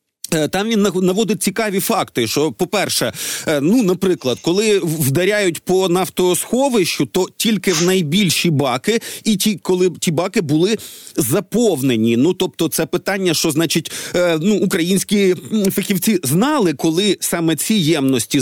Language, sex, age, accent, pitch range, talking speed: Ukrainian, male, 40-59, native, 160-195 Hz, 125 wpm